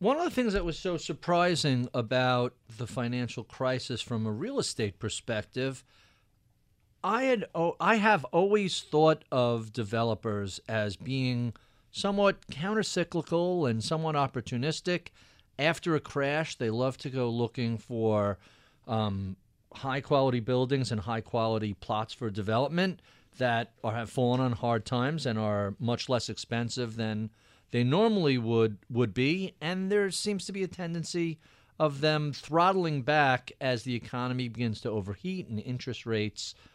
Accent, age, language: American, 50-69, English